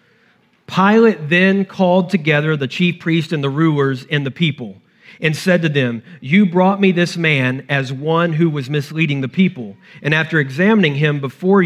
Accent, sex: American, male